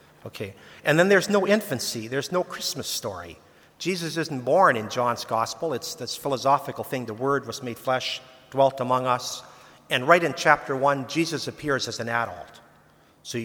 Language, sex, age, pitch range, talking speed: English, male, 50-69, 125-155 Hz, 175 wpm